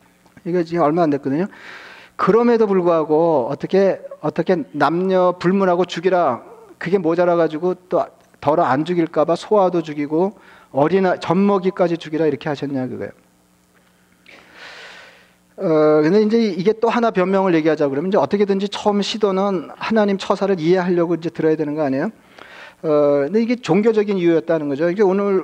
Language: Korean